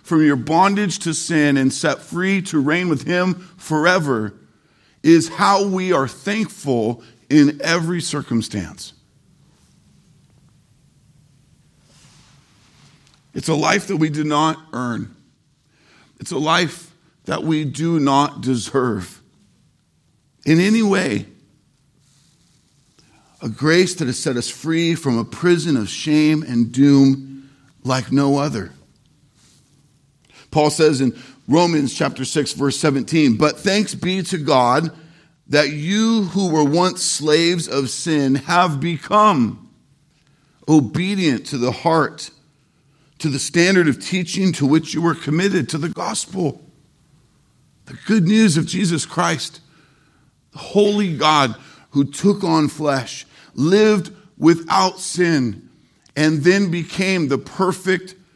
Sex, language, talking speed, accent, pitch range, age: male, English, 120 wpm, American, 140-175 Hz, 50-69